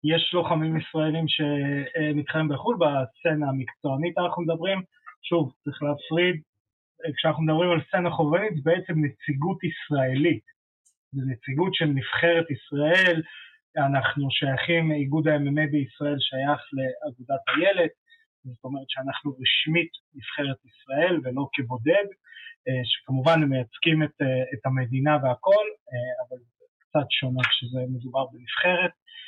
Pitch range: 135-170 Hz